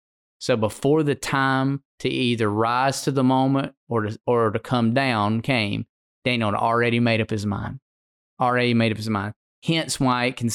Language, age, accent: English, 20-39, American